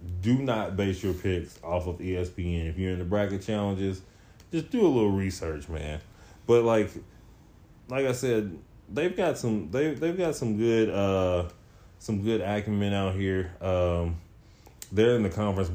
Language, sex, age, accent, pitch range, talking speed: English, male, 20-39, American, 85-105 Hz, 170 wpm